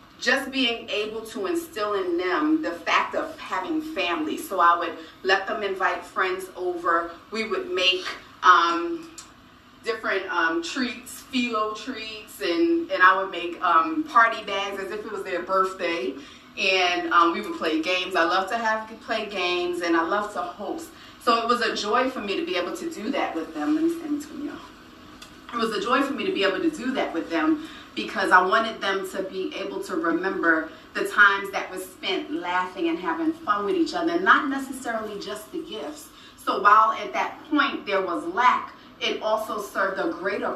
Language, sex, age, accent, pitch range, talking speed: English, female, 30-49, American, 190-315 Hz, 200 wpm